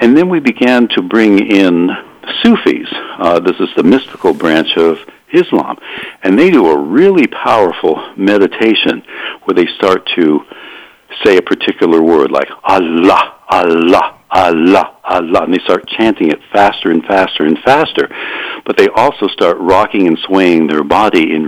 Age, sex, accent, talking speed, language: 60-79, male, American, 155 wpm, English